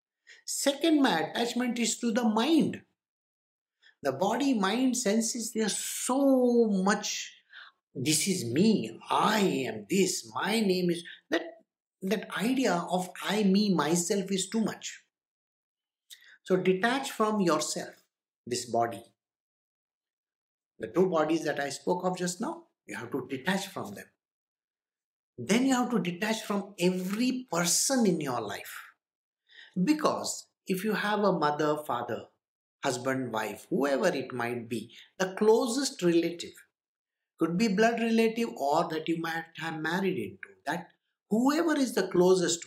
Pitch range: 170-245 Hz